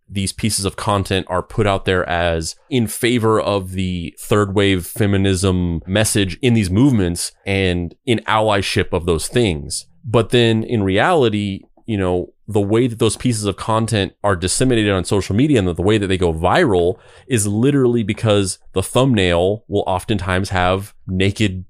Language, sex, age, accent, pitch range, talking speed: English, male, 30-49, American, 95-110 Hz, 165 wpm